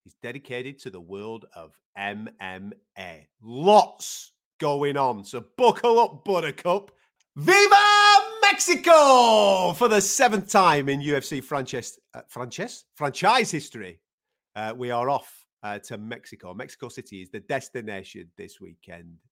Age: 40-59